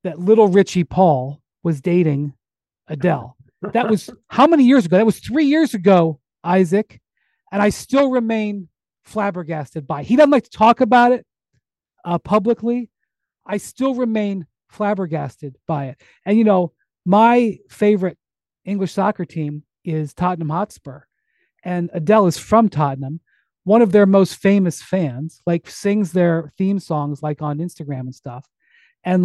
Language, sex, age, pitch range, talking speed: English, male, 40-59, 155-215 Hz, 150 wpm